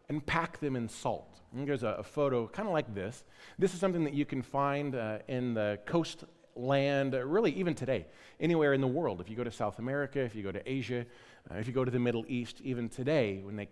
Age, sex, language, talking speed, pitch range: 40-59, male, English, 245 wpm, 115-150 Hz